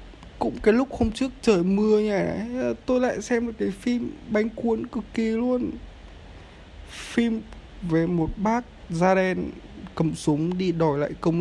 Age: 20-39